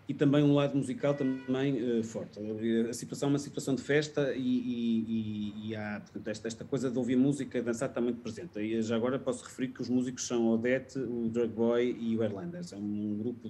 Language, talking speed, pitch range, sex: Portuguese, 205 wpm, 115-140 Hz, male